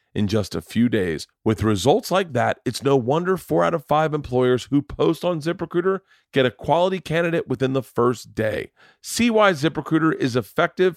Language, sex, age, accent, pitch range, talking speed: English, male, 40-59, American, 115-155 Hz, 185 wpm